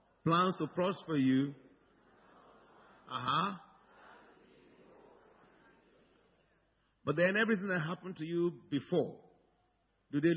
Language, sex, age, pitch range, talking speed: English, male, 50-69, 130-170 Hz, 95 wpm